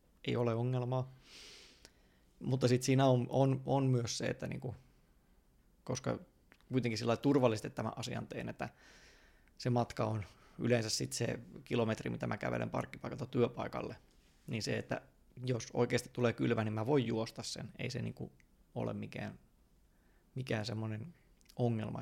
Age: 20-39